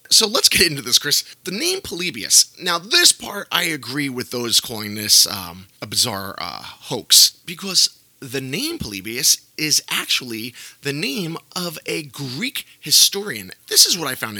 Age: 30-49